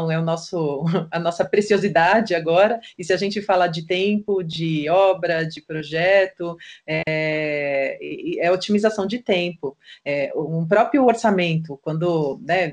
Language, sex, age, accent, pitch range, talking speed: Portuguese, female, 30-49, Brazilian, 170-225 Hz, 135 wpm